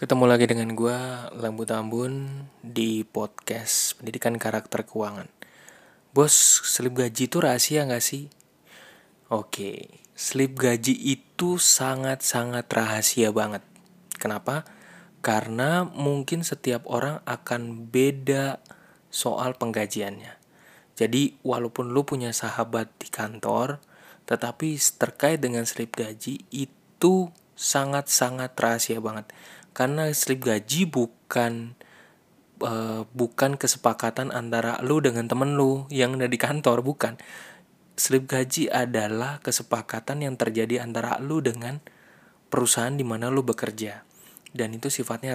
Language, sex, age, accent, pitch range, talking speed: Indonesian, male, 20-39, native, 115-135 Hz, 110 wpm